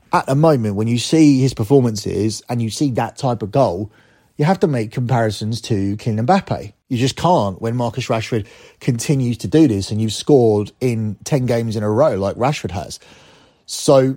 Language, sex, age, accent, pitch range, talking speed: English, male, 30-49, British, 105-125 Hz, 195 wpm